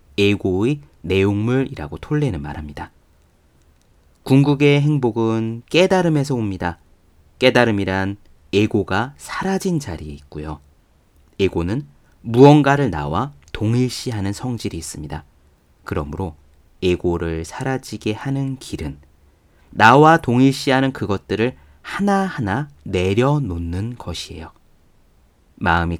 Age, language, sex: 30-49, Korean, male